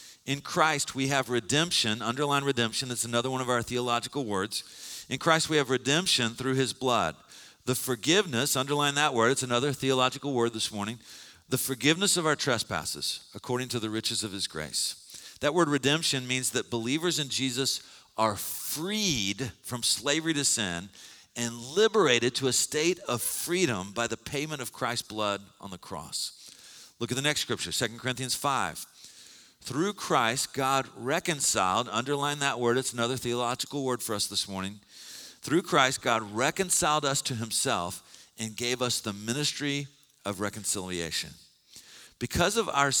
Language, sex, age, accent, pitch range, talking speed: English, male, 50-69, American, 115-145 Hz, 160 wpm